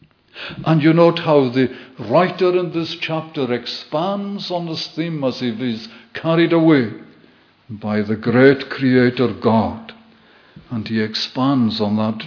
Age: 60-79